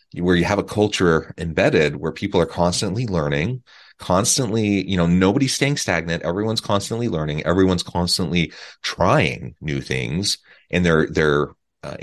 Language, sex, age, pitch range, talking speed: English, male, 30-49, 80-105 Hz, 145 wpm